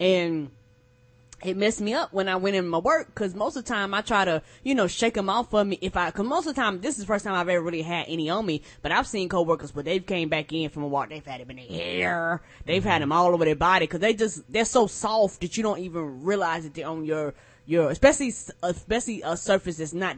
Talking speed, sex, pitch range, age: 275 wpm, female, 165-235 Hz, 20-39